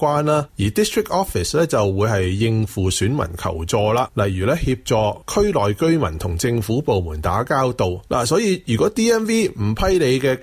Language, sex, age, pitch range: Chinese, male, 20-39, 100-145 Hz